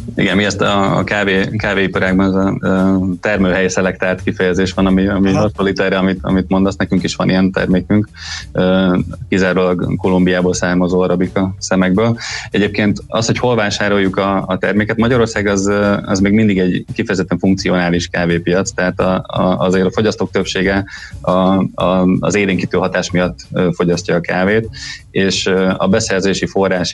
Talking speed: 150 wpm